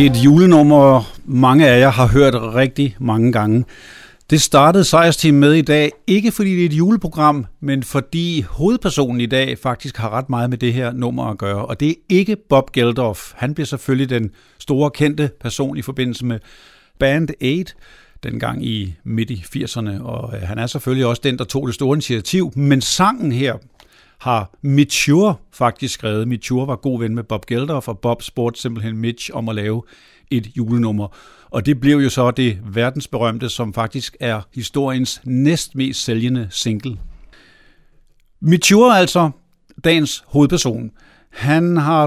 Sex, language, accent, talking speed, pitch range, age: male, Danish, native, 170 wpm, 120-150 Hz, 60-79